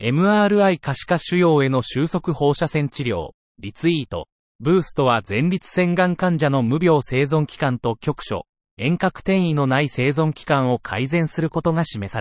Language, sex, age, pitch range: Japanese, male, 30-49, 125-175 Hz